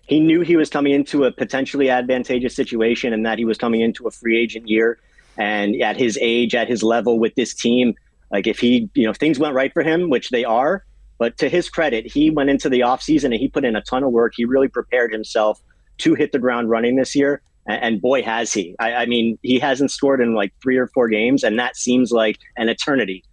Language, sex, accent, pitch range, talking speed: English, male, American, 115-135 Hz, 245 wpm